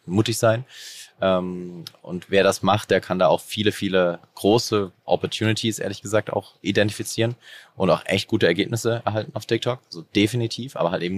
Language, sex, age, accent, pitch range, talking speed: German, male, 30-49, German, 95-115 Hz, 165 wpm